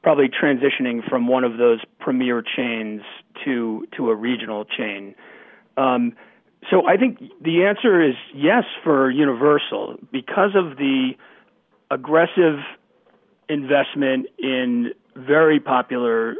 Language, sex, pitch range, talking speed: English, male, 120-150 Hz, 115 wpm